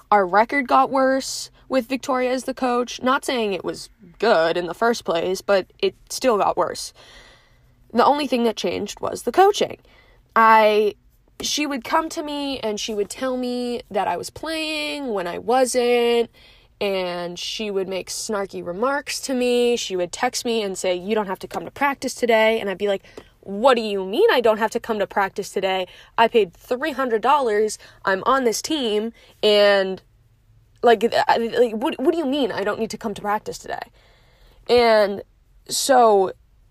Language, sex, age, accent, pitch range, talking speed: English, female, 10-29, American, 200-255 Hz, 185 wpm